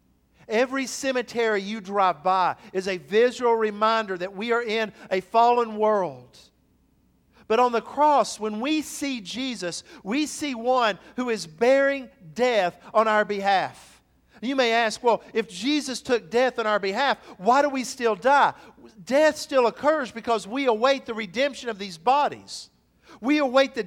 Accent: American